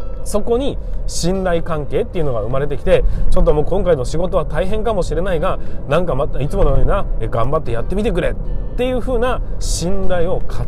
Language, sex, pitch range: Japanese, male, 155-240 Hz